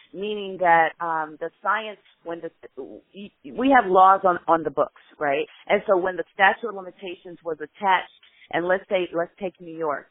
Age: 40-59